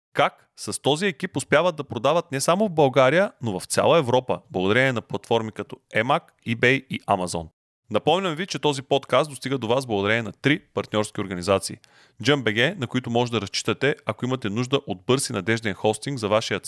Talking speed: 185 wpm